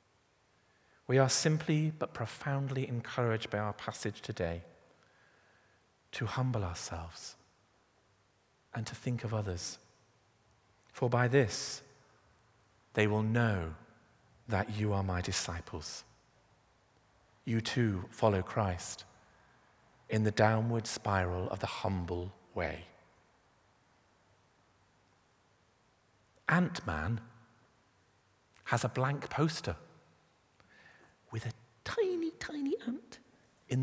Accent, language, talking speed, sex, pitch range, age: British, English, 90 wpm, male, 95-125 Hz, 40-59